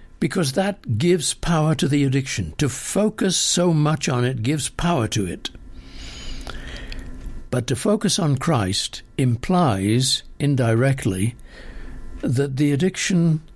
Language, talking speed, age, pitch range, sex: English, 120 wpm, 60-79, 105-150 Hz, male